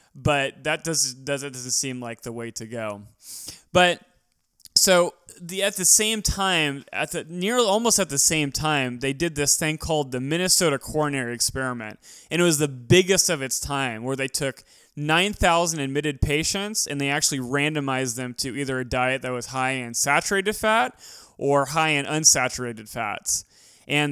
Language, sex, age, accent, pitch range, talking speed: English, male, 20-39, American, 130-170 Hz, 175 wpm